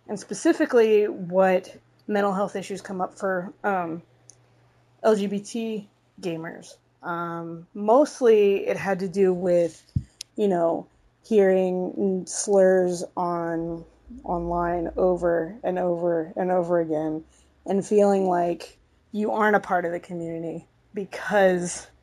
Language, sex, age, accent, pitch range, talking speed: English, female, 20-39, American, 165-200 Hz, 115 wpm